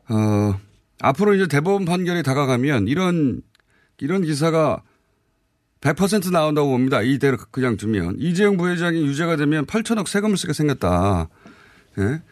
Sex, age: male, 30-49